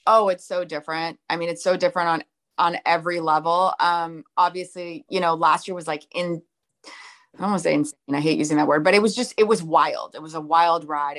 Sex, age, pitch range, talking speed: female, 30-49, 165-205 Hz, 230 wpm